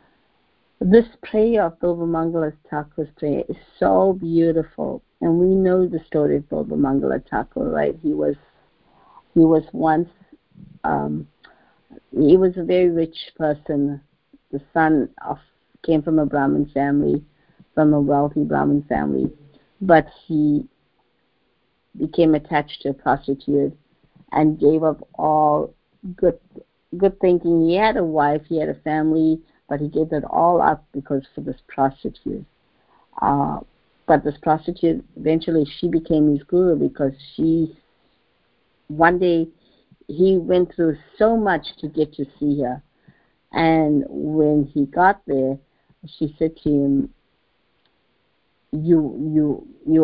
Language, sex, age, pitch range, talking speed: English, female, 50-69, 145-170 Hz, 135 wpm